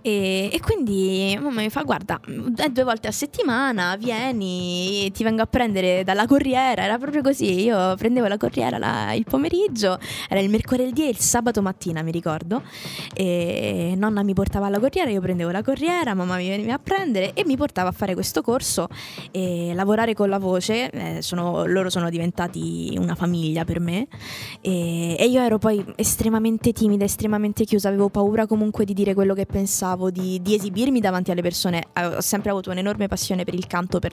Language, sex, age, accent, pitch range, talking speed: Italian, female, 20-39, native, 185-235 Hz, 185 wpm